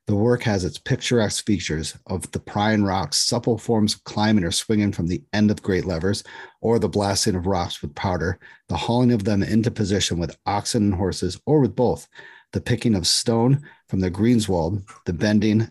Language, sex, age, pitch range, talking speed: English, male, 40-59, 90-110 Hz, 195 wpm